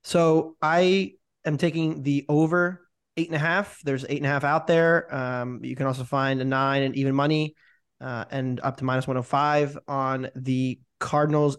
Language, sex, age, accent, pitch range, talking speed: English, male, 20-39, American, 135-160 Hz, 195 wpm